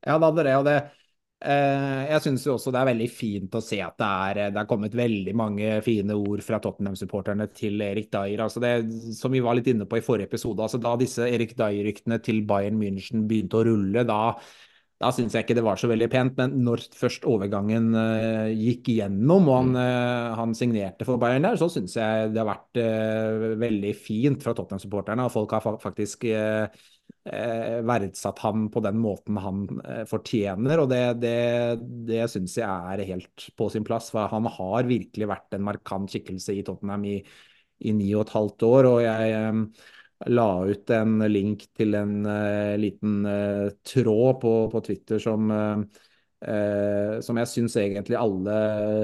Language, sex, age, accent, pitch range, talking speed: English, male, 20-39, Norwegian, 105-120 Hz, 190 wpm